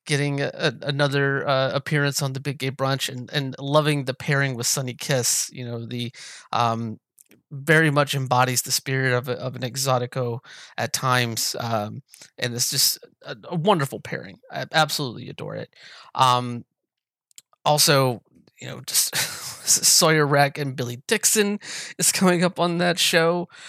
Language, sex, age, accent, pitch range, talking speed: English, male, 30-49, American, 125-155 Hz, 155 wpm